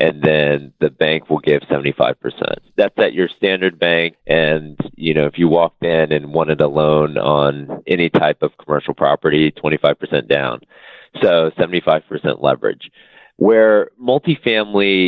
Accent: American